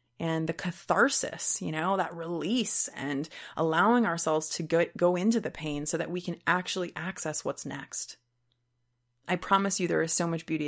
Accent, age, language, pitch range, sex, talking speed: American, 30-49, English, 150-195 Hz, female, 180 wpm